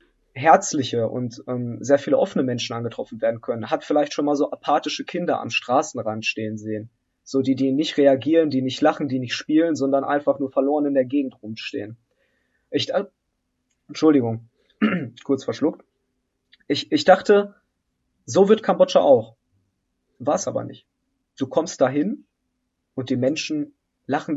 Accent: German